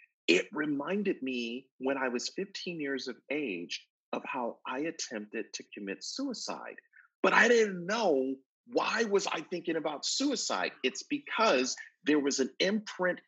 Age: 40-59